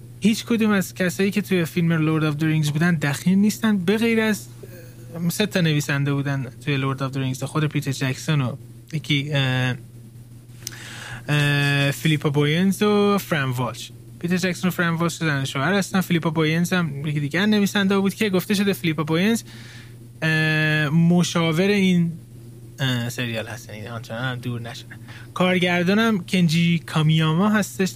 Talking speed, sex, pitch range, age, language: 135 wpm, male, 120-175 Hz, 20-39, Persian